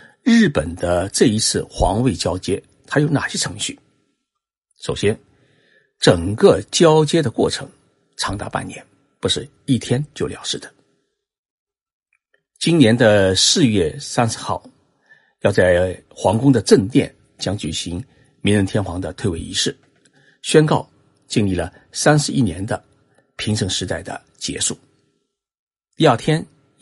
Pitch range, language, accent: 105-155 Hz, Chinese, native